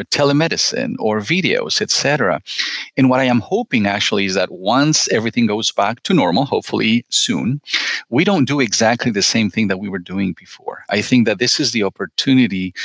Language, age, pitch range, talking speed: English, 40-59, 100-125 Hz, 180 wpm